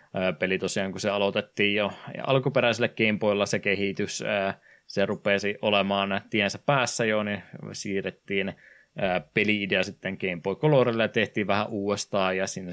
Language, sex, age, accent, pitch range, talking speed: Finnish, male, 20-39, native, 95-115 Hz, 135 wpm